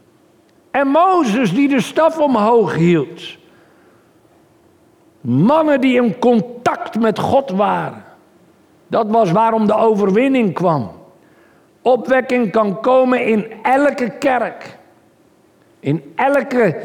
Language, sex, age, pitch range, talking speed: Dutch, male, 50-69, 165-230 Hz, 100 wpm